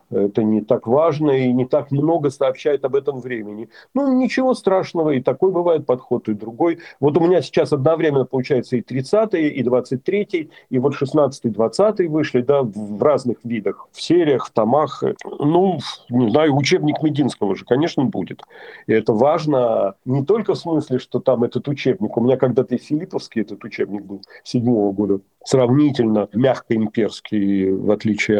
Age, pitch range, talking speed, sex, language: 40-59, 115-150 Hz, 175 wpm, male, Russian